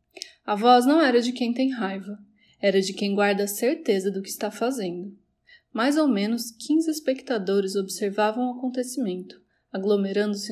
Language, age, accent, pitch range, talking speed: Portuguese, 20-39, Brazilian, 200-250 Hz, 155 wpm